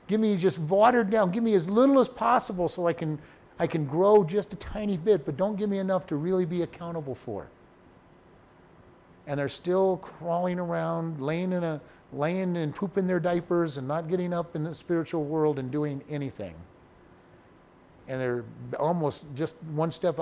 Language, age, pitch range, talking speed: English, 50-69, 135-185 Hz, 180 wpm